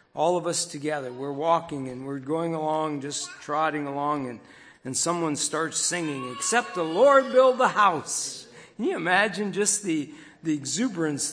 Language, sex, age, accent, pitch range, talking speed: English, male, 60-79, American, 145-205 Hz, 165 wpm